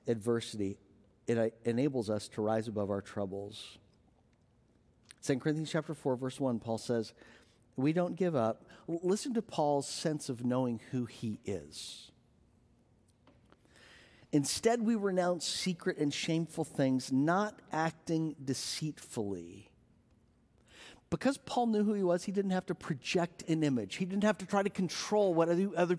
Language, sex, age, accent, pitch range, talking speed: English, male, 50-69, American, 120-190 Hz, 140 wpm